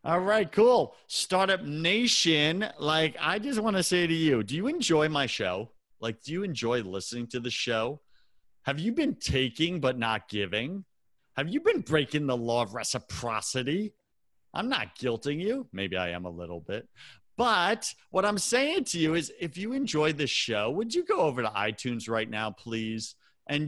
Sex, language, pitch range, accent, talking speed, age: male, English, 110-170 Hz, American, 185 wpm, 40-59